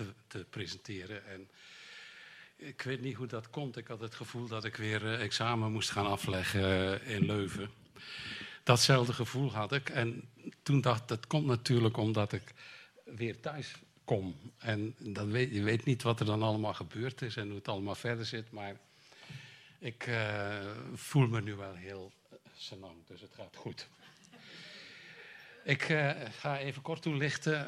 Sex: male